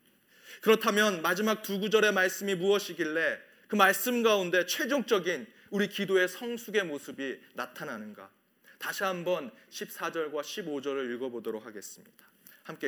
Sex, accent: male, native